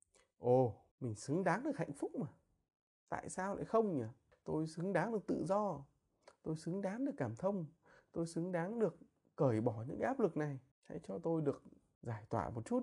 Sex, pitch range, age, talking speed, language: male, 110-165 Hz, 20-39, 200 wpm, Vietnamese